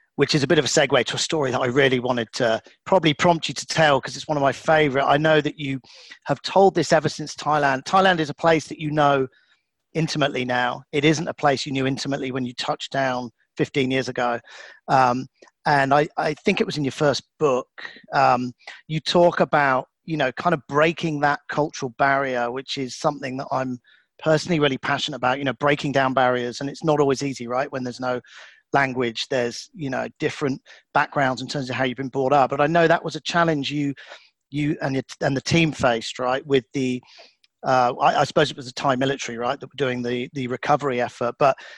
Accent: British